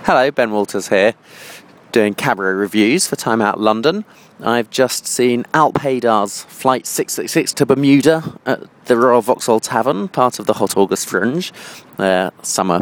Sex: male